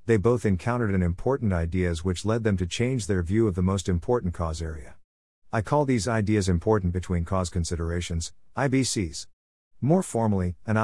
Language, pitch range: English, 90-115 Hz